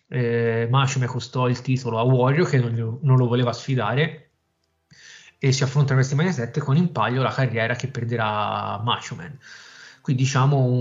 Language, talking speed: Italian, 160 wpm